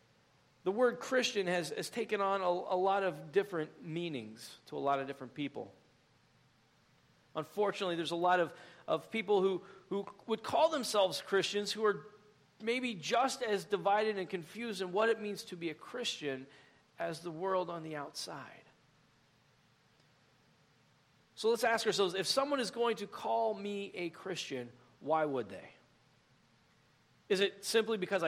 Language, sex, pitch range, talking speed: English, male, 165-220 Hz, 155 wpm